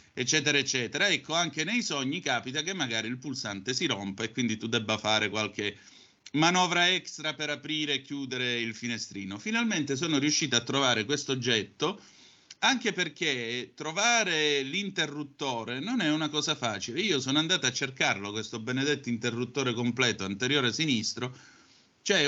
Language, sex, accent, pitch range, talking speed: Italian, male, native, 120-155 Hz, 150 wpm